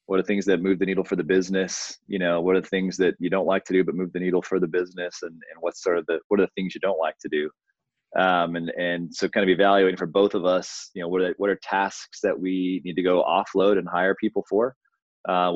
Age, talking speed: 20-39, 280 wpm